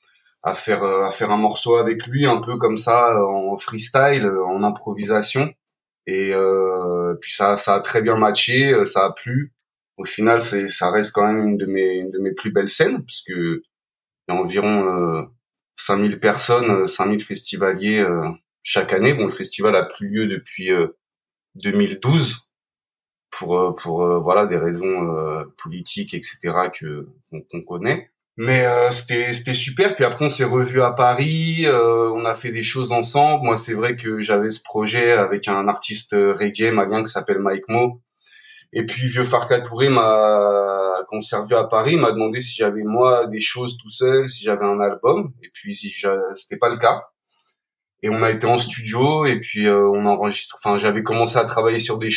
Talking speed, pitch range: 185 wpm, 100-125 Hz